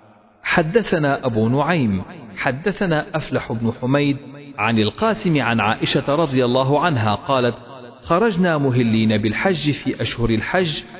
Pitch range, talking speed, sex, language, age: 115-170 Hz, 115 wpm, male, Arabic, 40-59